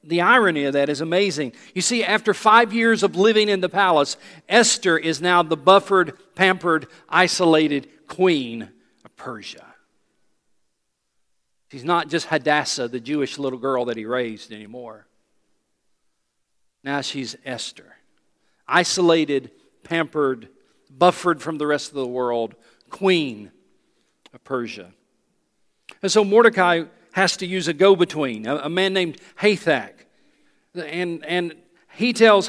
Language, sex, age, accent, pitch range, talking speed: English, male, 50-69, American, 155-205 Hz, 130 wpm